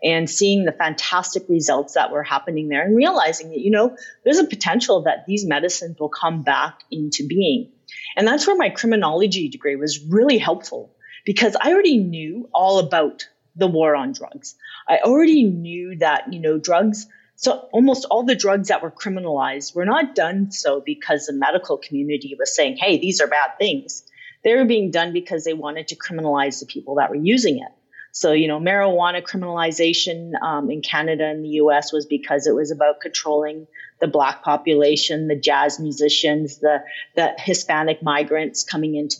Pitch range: 150-210 Hz